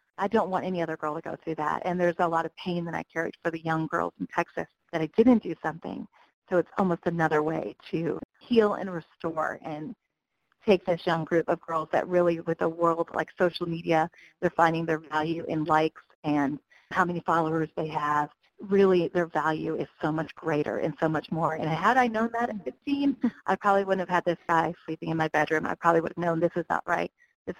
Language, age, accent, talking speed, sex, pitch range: English, 40-59, American, 230 wpm, female, 160-185 Hz